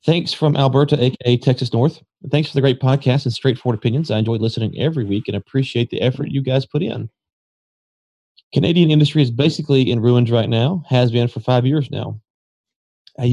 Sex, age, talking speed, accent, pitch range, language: male, 30-49, 190 wpm, American, 115-140 Hz, English